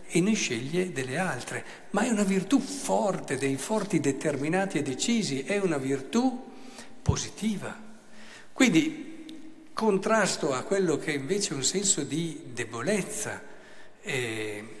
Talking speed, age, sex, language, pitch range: 125 wpm, 60-79, male, Italian, 115-160 Hz